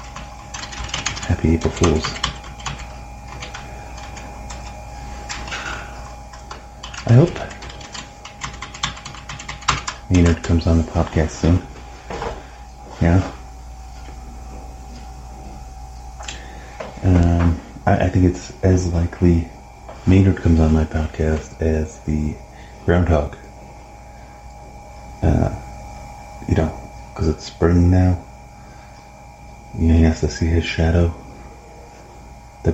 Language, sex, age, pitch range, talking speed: English, male, 30-49, 65-85 Hz, 80 wpm